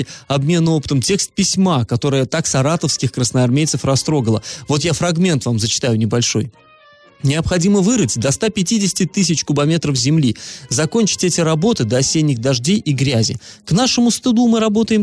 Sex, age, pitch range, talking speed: male, 20-39, 125-175 Hz, 140 wpm